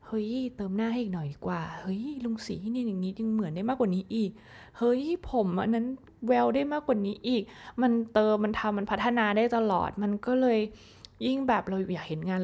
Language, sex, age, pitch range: Thai, female, 20-39, 185-240 Hz